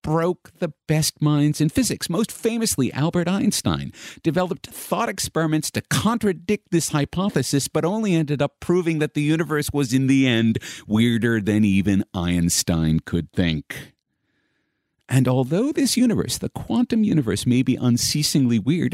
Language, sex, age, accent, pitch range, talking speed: English, male, 50-69, American, 110-170 Hz, 145 wpm